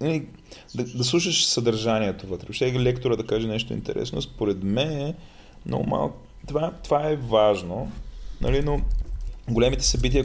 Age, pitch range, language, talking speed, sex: 20-39, 110-140 Hz, Bulgarian, 145 wpm, male